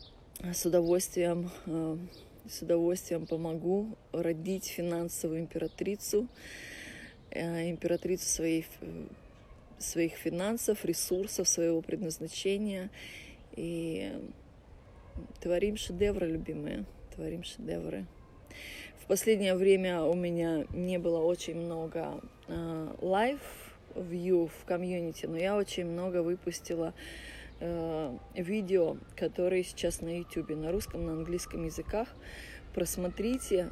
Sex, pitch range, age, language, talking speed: female, 165-190 Hz, 20-39, Russian, 85 wpm